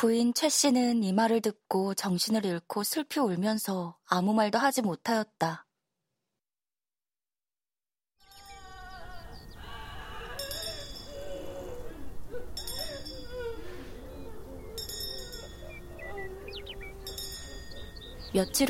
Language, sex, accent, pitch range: Korean, female, native, 190-255 Hz